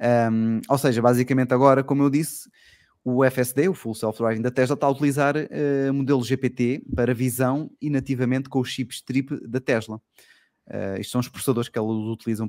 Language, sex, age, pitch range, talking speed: Portuguese, male, 20-39, 110-135 Hz, 185 wpm